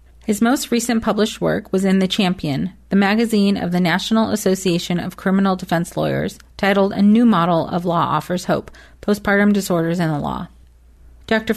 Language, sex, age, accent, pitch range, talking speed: English, female, 30-49, American, 175-210 Hz, 170 wpm